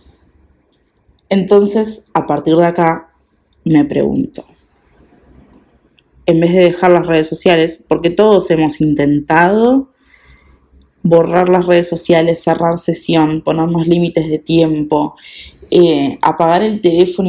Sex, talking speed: female, 110 wpm